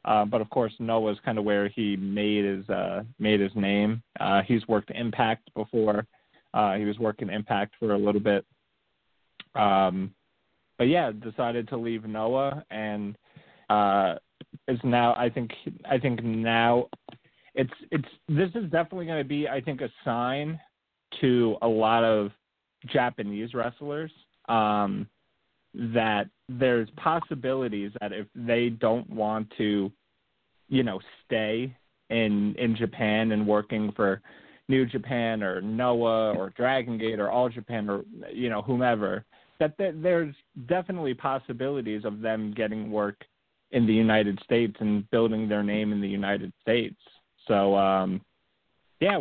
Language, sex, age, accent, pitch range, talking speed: English, male, 30-49, American, 105-125 Hz, 150 wpm